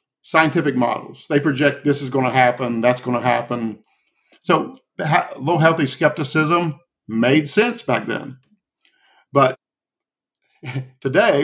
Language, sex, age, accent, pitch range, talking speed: English, male, 50-69, American, 130-165 Hz, 120 wpm